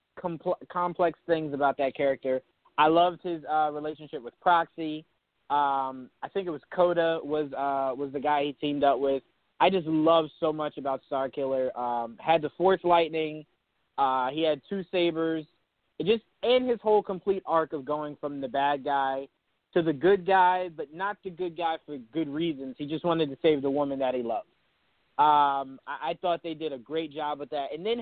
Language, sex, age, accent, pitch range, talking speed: English, male, 20-39, American, 145-180 Hz, 200 wpm